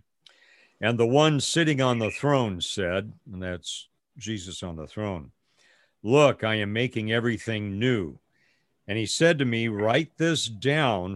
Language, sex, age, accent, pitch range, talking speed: English, male, 60-79, American, 100-135 Hz, 150 wpm